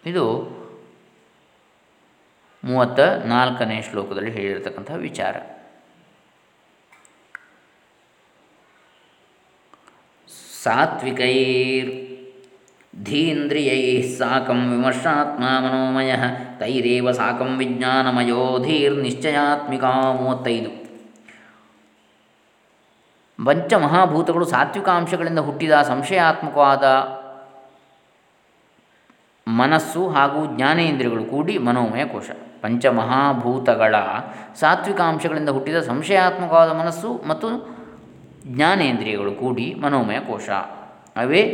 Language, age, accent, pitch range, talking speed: Kannada, 20-39, native, 125-155 Hz, 55 wpm